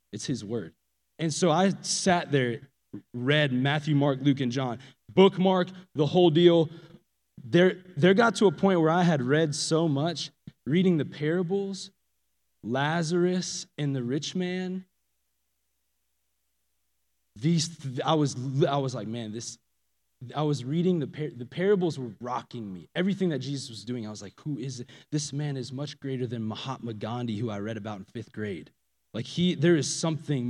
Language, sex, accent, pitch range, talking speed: English, male, American, 105-165 Hz, 175 wpm